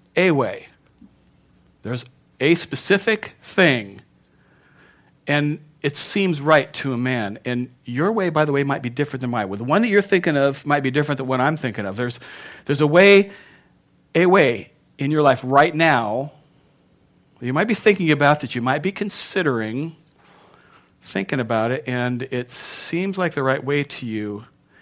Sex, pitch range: male, 120-155 Hz